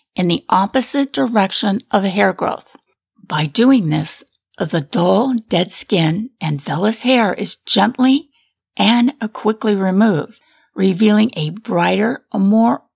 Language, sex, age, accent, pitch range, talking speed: English, female, 50-69, American, 185-235 Hz, 120 wpm